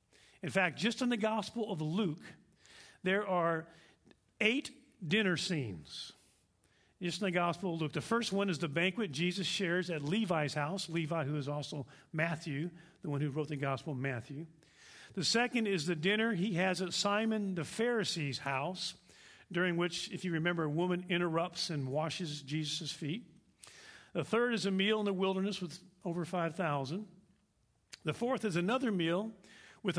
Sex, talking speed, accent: male, 170 wpm, American